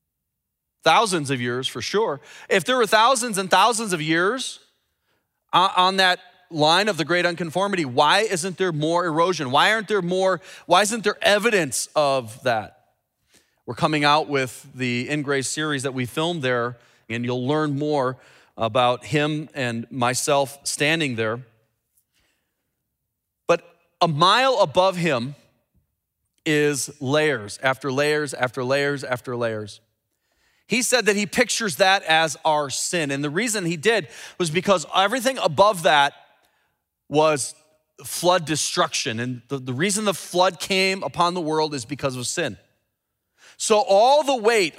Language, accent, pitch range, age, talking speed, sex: English, American, 135-195 Hz, 30-49, 145 wpm, male